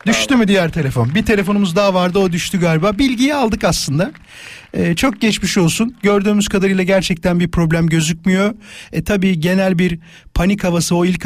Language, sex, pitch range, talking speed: Turkish, male, 155-205 Hz, 170 wpm